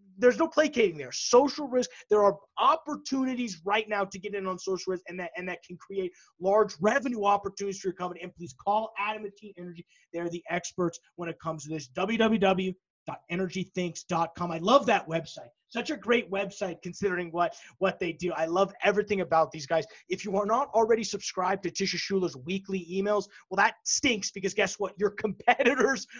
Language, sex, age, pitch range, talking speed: English, male, 20-39, 175-215 Hz, 190 wpm